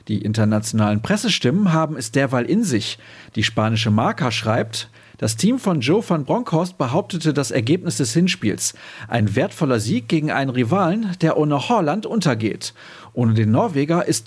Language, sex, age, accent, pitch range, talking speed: German, male, 40-59, German, 115-170 Hz, 155 wpm